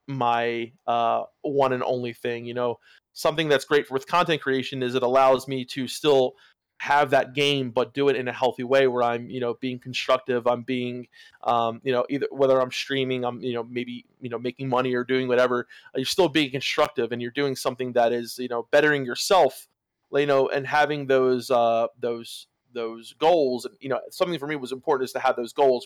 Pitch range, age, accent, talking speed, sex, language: 120-135 Hz, 20-39, American, 215 wpm, male, English